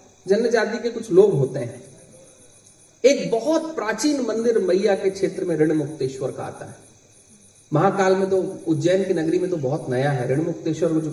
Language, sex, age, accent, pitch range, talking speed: Hindi, male, 40-59, native, 145-210 Hz, 165 wpm